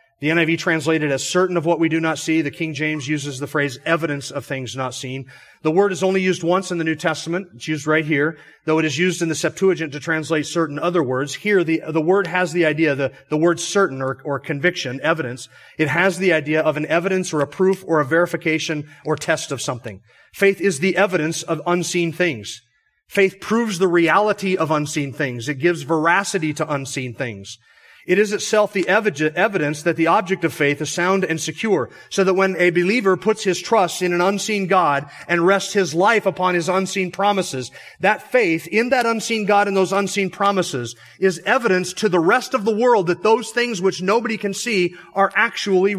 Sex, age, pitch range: male, 30-49, 155-195 Hz